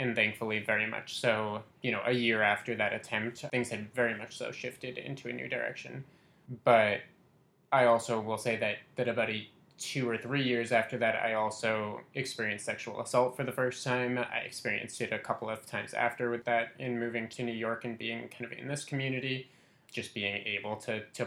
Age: 20-39